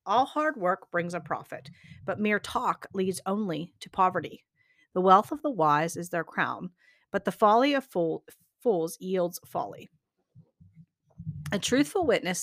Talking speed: 150 wpm